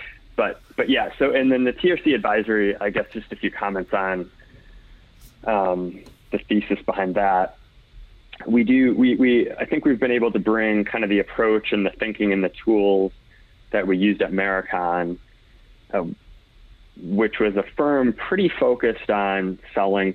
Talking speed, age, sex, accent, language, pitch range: 165 wpm, 20-39, male, American, English, 95-110 Hz